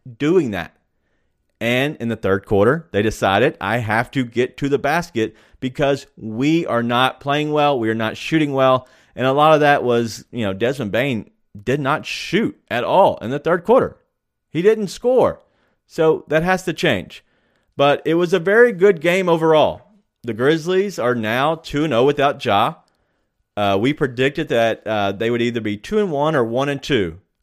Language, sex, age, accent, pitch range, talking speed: English, male, 30-49, American, 115-155 Hz, 175 wpm